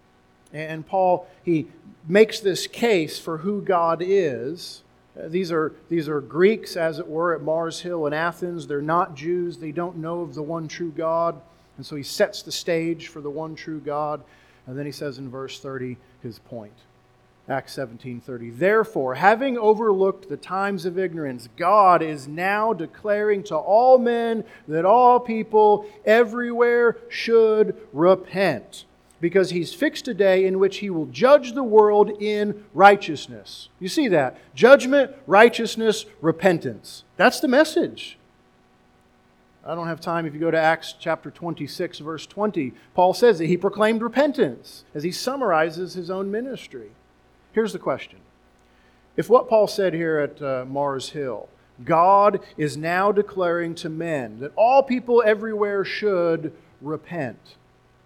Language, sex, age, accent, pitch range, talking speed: English, male, 50-69, American, 155-210 Hz, 150 wpm